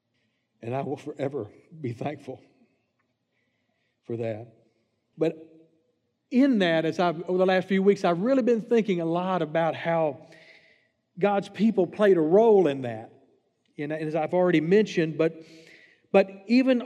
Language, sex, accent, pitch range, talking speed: English, male, American, 125-185 Hz, 145 wpm